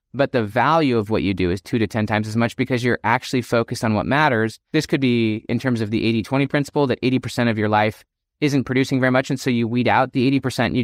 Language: English